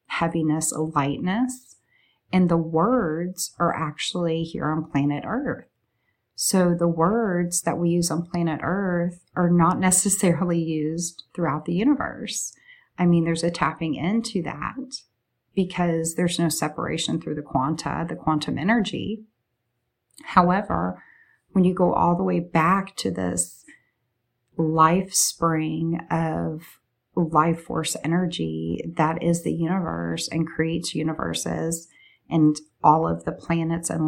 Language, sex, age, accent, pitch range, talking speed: English, female, 30-49, American, 150-175 Hz, 130 wpm